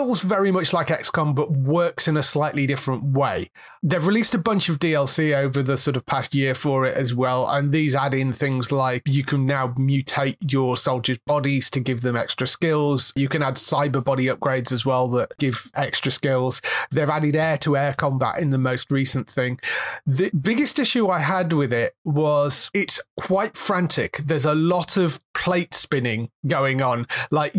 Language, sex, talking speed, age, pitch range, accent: English, male, 190 wpm, 30-49, 135-160 Hz, British